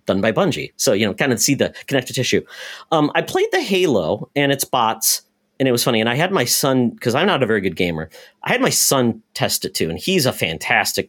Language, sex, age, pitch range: English, male, 40-59, 120-175 Hz